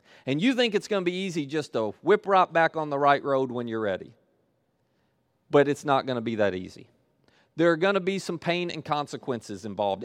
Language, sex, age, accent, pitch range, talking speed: English, male, 40-59, American, 130-180 Hz, 225 wpm